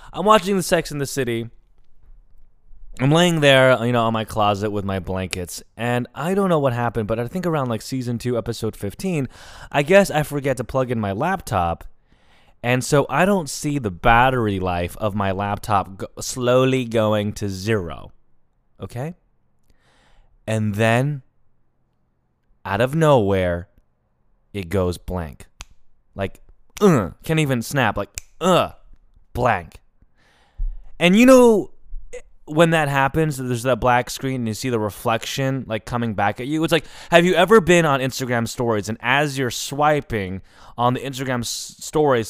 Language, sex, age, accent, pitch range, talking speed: English, male, 20-39, American, 105-145 Hz, 160 wpm